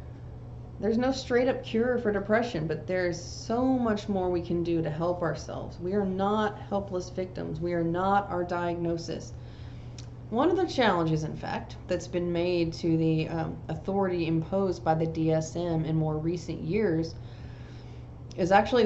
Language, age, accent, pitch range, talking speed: English, 30-49, American, 155-190 Hz, 160 wpm